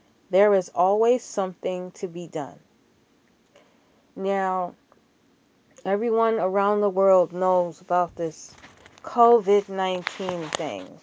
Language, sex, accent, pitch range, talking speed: English, female, American, 185-220 Hz, 90 wpm